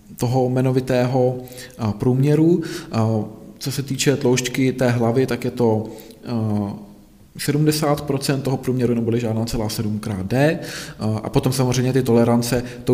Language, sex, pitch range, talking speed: Czech, male, 120-140 Hz, 125 wpm